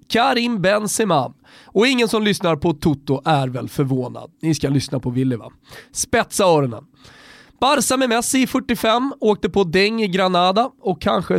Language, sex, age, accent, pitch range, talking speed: Swedish, male, 30-49, native, 160-225 Hz, 165 wpm